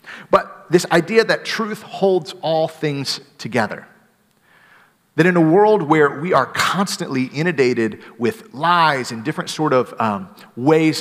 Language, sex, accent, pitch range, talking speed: English, male, American, 125-180 Hz, 140 wpm